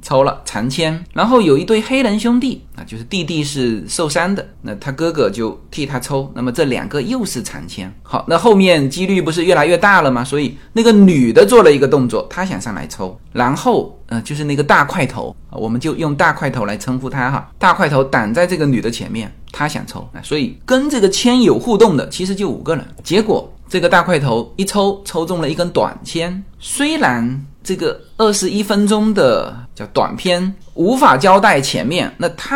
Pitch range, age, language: 140-220 Hz, 20-39, Chinese